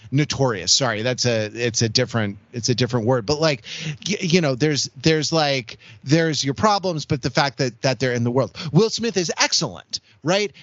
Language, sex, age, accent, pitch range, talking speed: English, male, 30-49, American, 135-180 Hz, 200 wpm